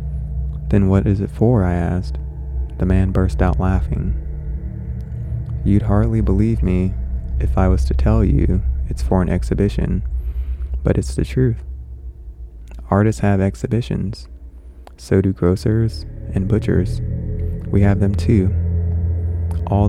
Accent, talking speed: American, 130 wpm